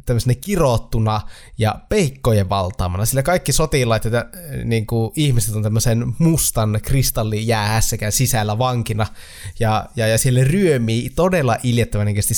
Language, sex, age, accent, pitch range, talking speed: Finnish, male, 20-39, native, 105-120 Hz, 110 wpm